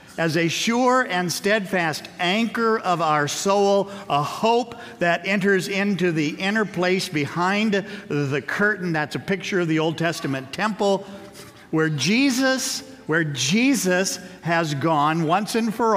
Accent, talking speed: American, 140 wpm